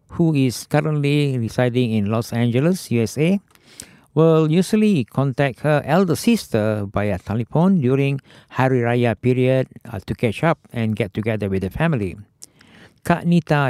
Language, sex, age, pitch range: Japanese, male, 60-79, 115-155 Hz